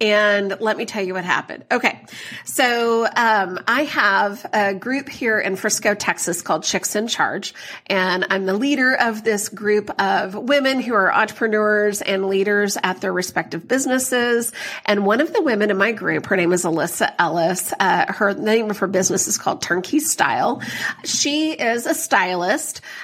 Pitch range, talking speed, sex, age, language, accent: 200-260 Hz, 175 wpm, female, 30-49, English, American